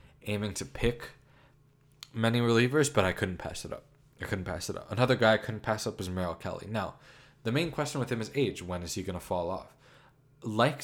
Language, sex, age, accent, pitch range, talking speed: English, male, 20-39, American, 95-135 Hz, 225 wpm